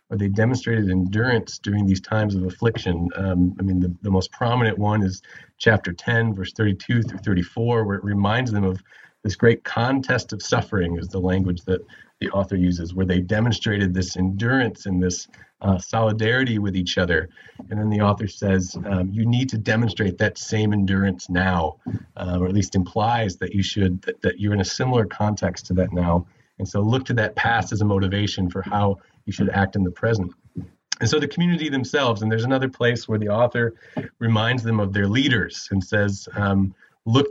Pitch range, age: 95-115 Hz, 30-49